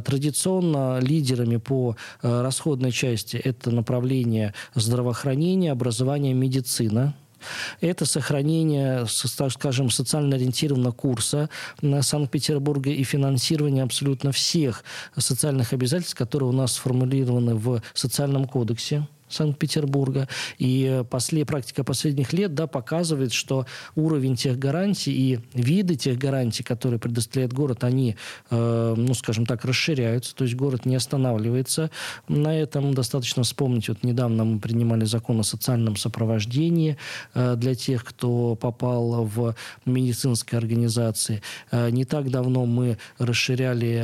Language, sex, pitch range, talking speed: Russian, male, 120-140 Hz, 115 wpm